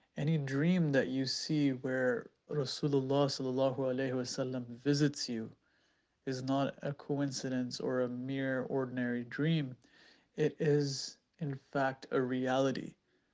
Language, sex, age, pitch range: English, male, 30-49, 130-150 Hz